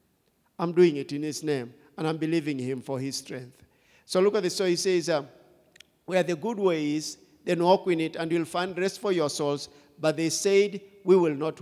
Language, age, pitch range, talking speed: English, 50-69, 150-190 Hz, 215 wpm